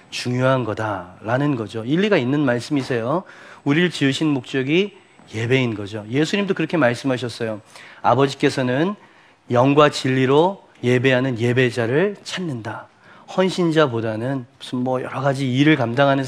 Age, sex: 40-59, male